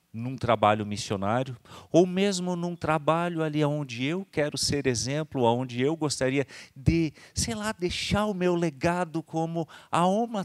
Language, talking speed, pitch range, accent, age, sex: Portuguese, 150 wpm, 120-160 Hz, Brazilian, 40-59, male